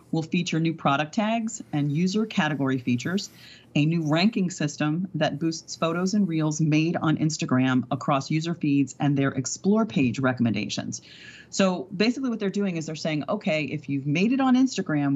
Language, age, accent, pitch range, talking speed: English, 40-59, American, 140-180 Hz, 175 wpm